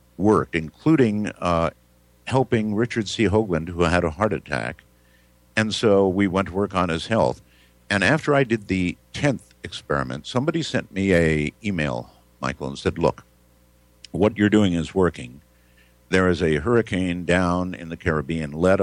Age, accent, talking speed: 50-69, American, 165 wpm